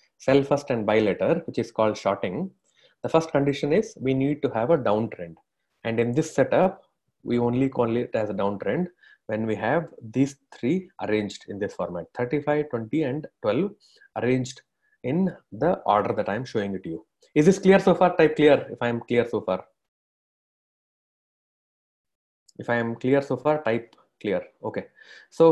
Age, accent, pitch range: 30-49, Indian, 115-160 Hz